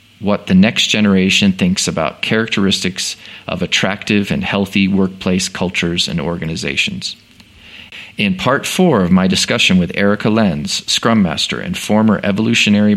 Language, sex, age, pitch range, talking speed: English, male, 40-59, 100-135 Hz, 135 wpm